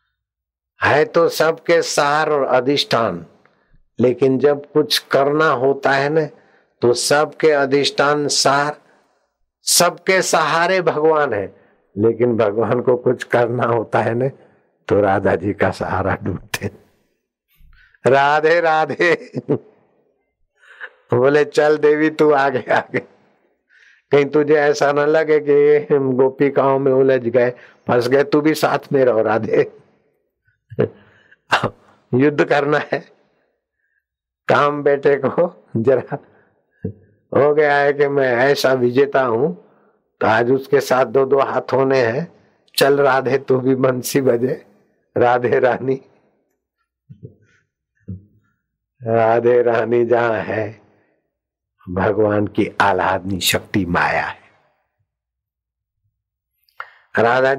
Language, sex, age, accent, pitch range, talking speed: Hindi, male, 60-79, native, 115-145 Hz, 110 wpm